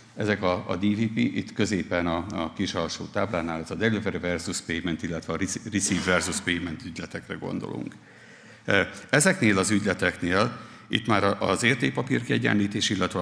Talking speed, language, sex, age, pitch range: 140 wpm, Hungarian, male, 60-79, 85-115 Hz